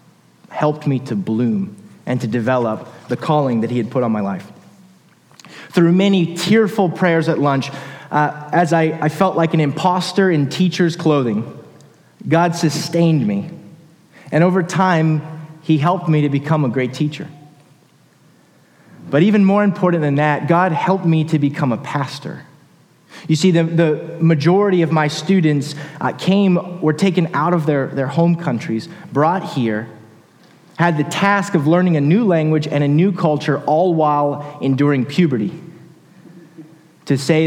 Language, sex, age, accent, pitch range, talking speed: English, male, 30-49, American, 145-175 Hz, 155 wpm